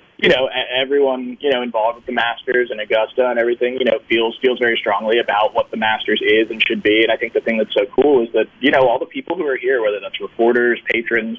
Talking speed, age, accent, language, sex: 260 wpm, 20-39, American, English, male